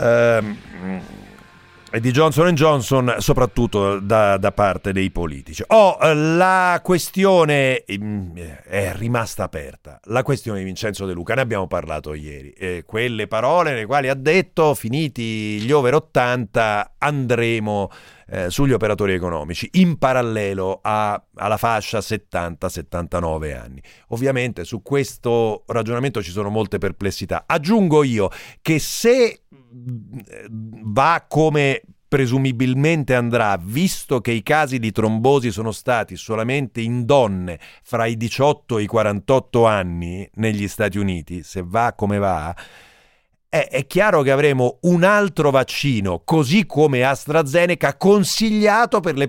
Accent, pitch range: native, 100-145 Hz